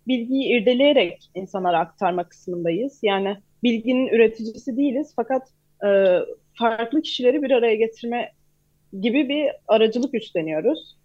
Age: 30-49